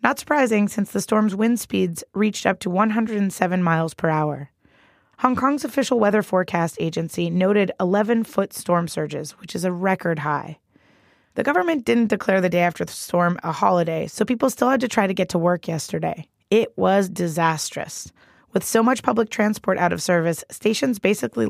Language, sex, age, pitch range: English, female, 20-39, 170-215 Hz